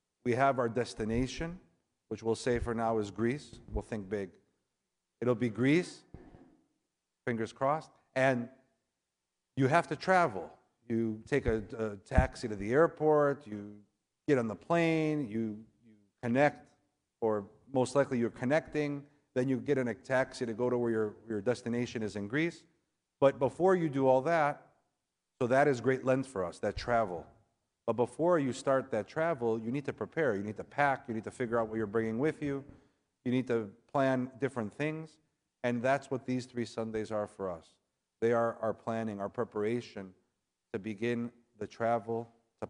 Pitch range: 110-130 Hz